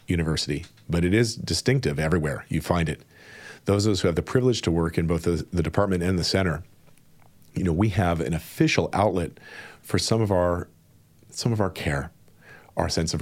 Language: English